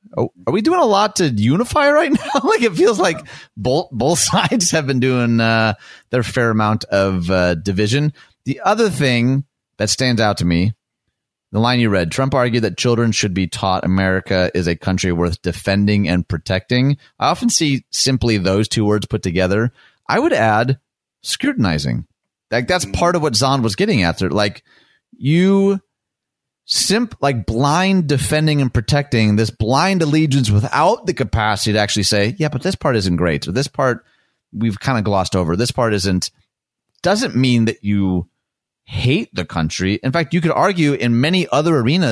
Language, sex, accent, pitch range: English, male, American, 100-150 Hz